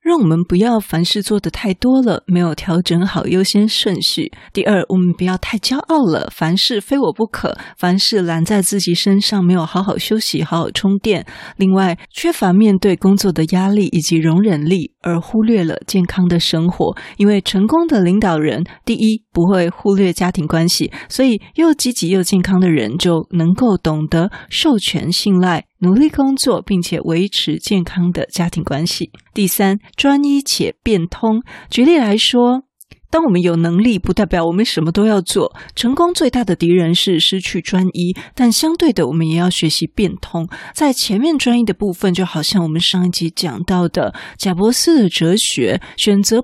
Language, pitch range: Chinese, 170-220 Hz